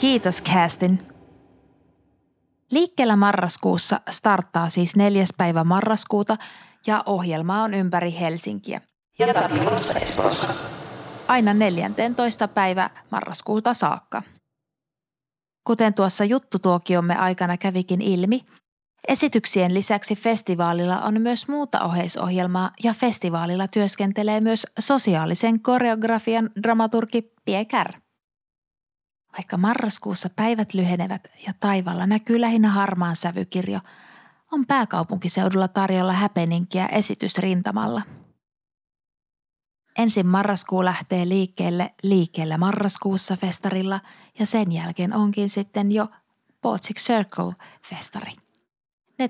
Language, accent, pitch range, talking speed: Finnish, native, 180-220 Hz, 90 wpm